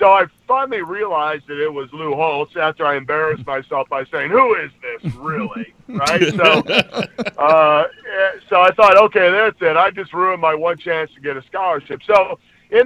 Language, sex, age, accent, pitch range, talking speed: English, male, 50-69, American, 145-190 Hz, 185 wpm